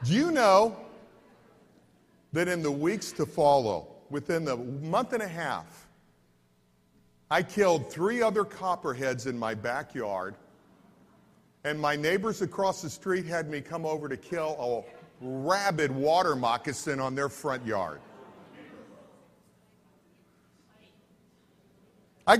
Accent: American